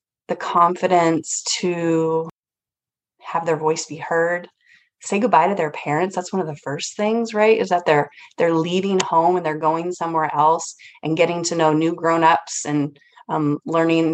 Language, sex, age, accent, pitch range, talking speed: English, female, 20-39, American, 145-175 Hz, 170 wpm